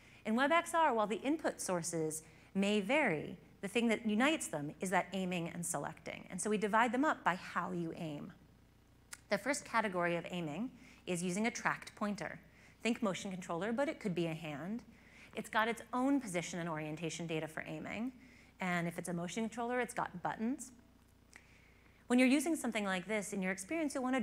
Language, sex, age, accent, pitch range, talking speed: English, female, 30-49, American, 175-235 Hz, 190 wpm